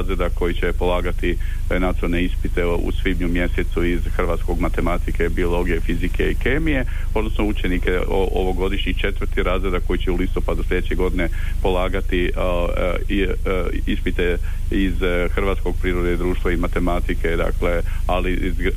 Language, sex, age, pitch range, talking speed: Croatian, male, 40-59, 85-100 Hz, 125 wpm